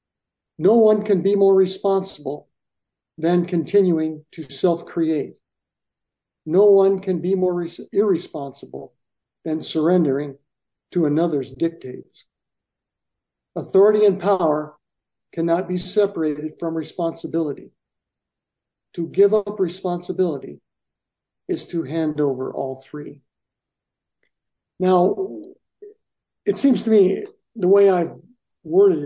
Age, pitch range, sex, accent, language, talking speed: 60-79, 160-195 Hz, male, American, English, 100 wpm